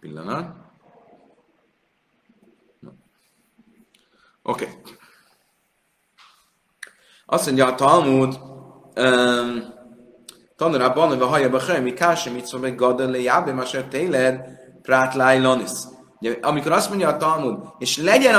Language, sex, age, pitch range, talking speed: Hungarian, male, 30-49, 125-170 Hz, 95 wpm